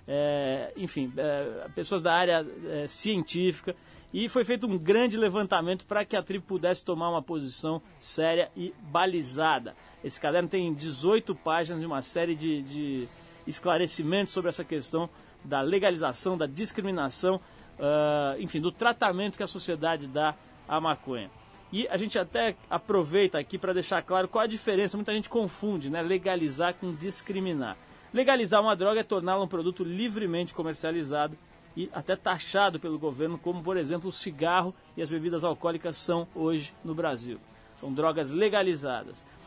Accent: Brazilian